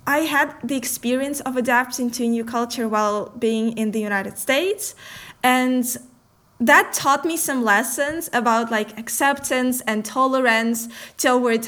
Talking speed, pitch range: 145 wpm, 235-280 Hz